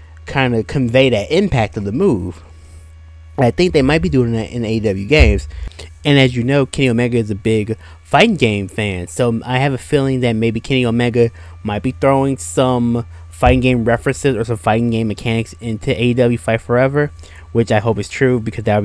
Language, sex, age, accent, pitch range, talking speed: English, male, 20-39, American, 105-130 Hz, 200 wpm